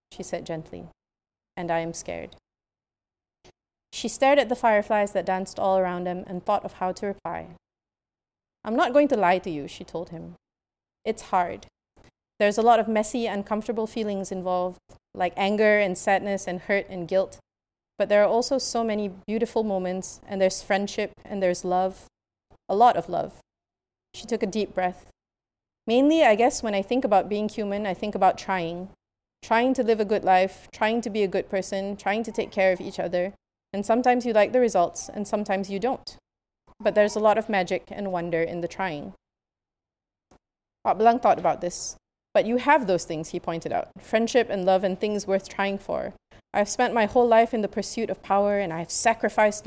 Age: 30-49